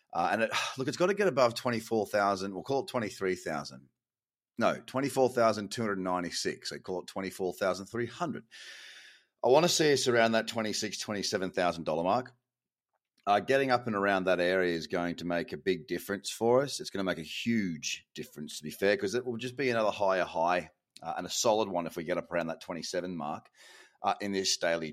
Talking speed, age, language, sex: 235 wpm, 30-49, English, male